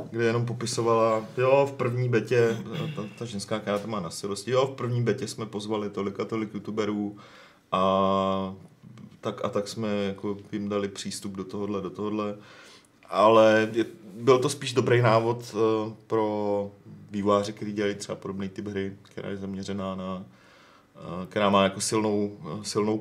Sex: male